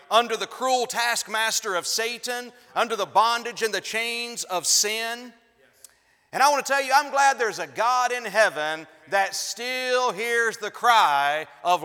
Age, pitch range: 40-59, 210-250 Hz